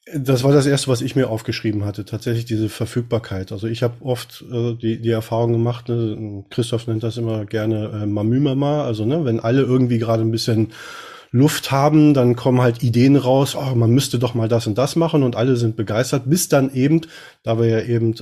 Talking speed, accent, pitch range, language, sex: 210 wpm, German, 110-130 Hz, German, male